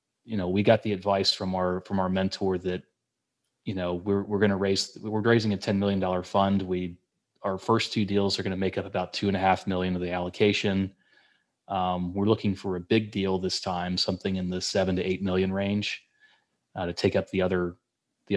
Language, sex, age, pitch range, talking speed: English, male, 30-49, 90-100 Hz, 220 wpm